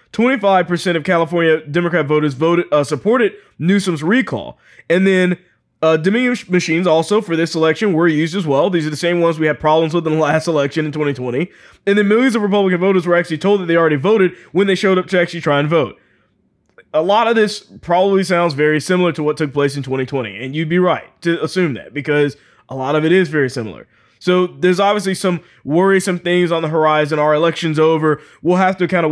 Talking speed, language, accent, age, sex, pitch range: 220 wpm, English, American, 20-39, male, 150-180 Hz